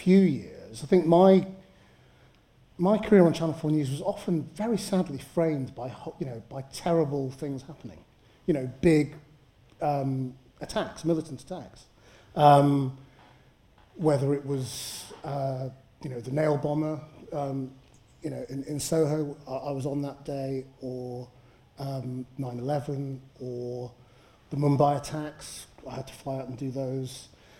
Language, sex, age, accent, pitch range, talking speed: English, male, 30-49, British, 130-165 Hz, 145 wpm